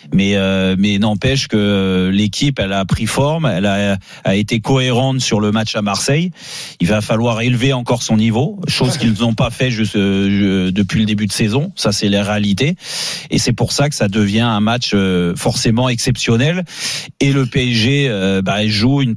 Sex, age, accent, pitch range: male, 30-49, French, 110-140 Hz